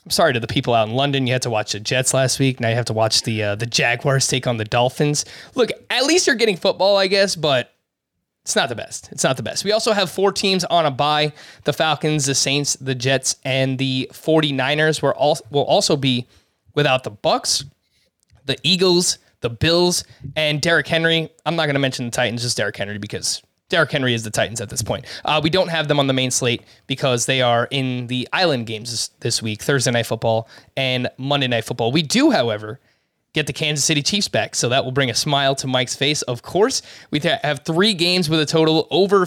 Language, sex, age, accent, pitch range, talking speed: English, male, 20-39, American, 130-155 Hz, 230 wpm